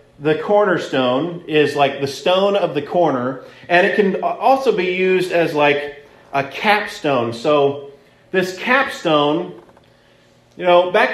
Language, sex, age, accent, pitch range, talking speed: English, male, 40-59, American, 155-210 Hz, 135 wpm